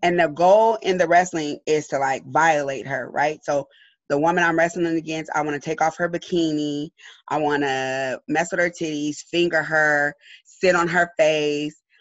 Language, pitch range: English, 145-175 Hz